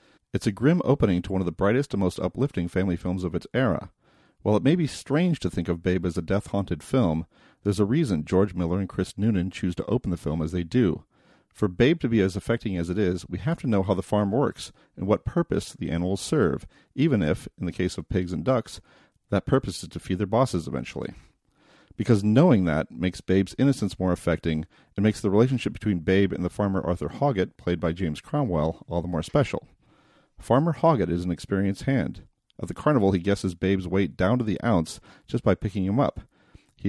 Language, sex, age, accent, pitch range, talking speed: English, male, 40-59, American, 90-115 Hz, 220 wpm